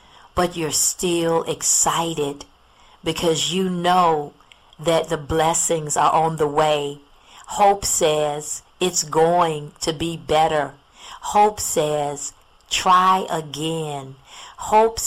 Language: English